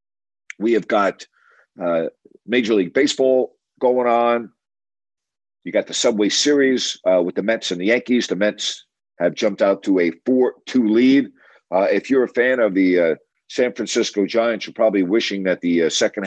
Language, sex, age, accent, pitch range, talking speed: English, male, 50-69, American, 90-110 Hz, 175 wpm